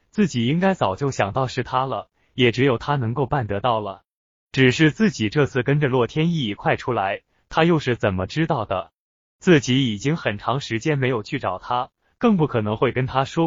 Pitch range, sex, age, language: 115-155 Hz, male, 20-39, Chinese